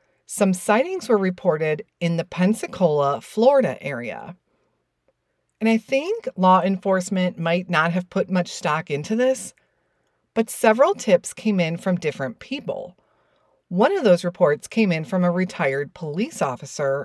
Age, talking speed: 40-59, 145 wpm